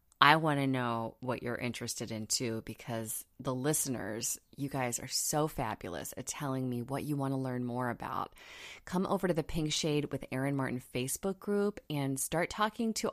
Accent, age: American, 20-39